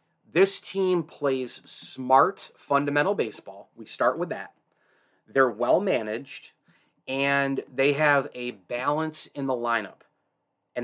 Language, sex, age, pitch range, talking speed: English, male, 30-49, 120-140 Hz, 115 wpm